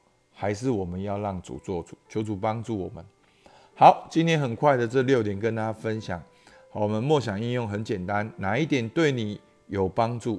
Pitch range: 100-130 Hz